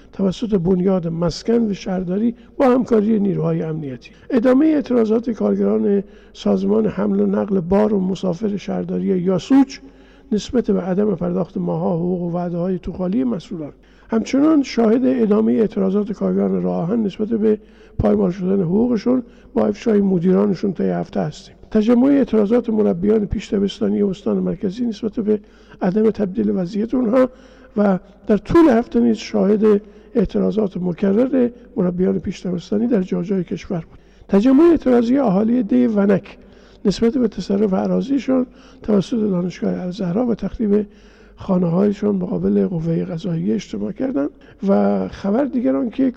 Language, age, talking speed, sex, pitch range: Persian, 60-79, 135 wpm, male, 185-230 Hz